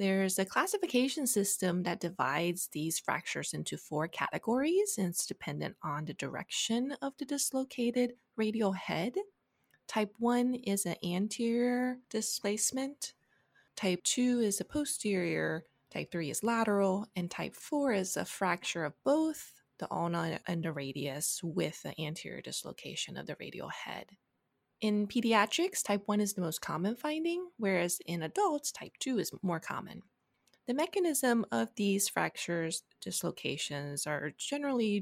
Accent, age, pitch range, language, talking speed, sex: American, 20-39, 175-245 Hz, English, 140 wpm, female